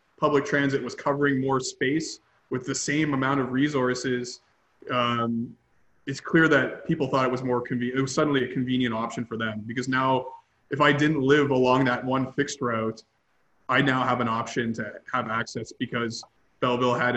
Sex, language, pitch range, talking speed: male, English, 120-145 Hz, 180 wpm